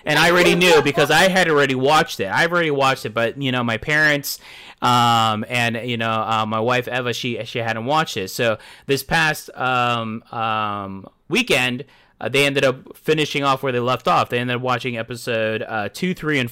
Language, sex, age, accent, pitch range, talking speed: English, male, 20-39, American, 120-160 Hz, 205 wpm